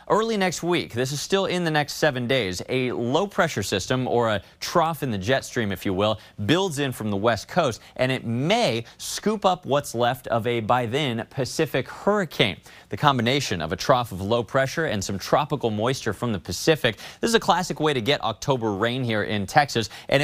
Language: English